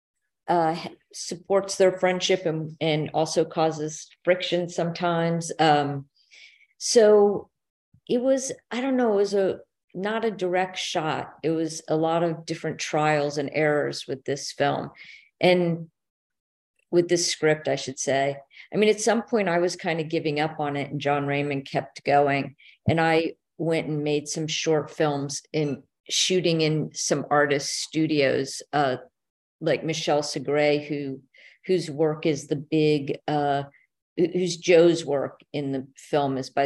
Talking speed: 155 wpm